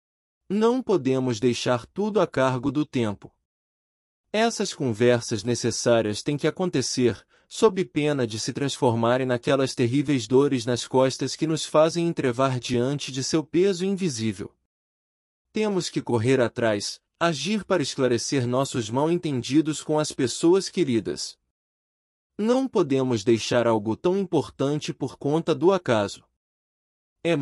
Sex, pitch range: male, 115-170 Hz